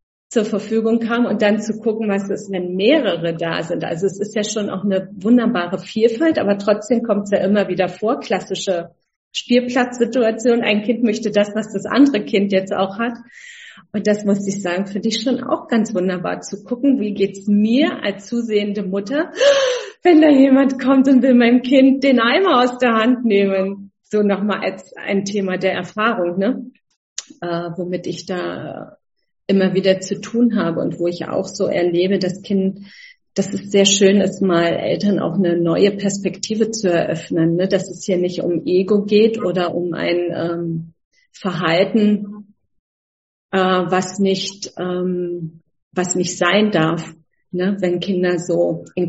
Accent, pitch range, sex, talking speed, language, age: German, 180-220 Hz, female, 170 wpm, German, 40-59